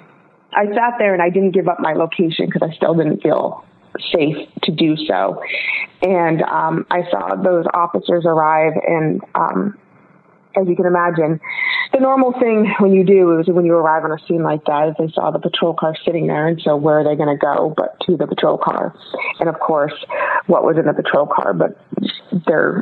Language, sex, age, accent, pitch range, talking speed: English, female, 30-49, American, 165-195 Hz, 210 wpm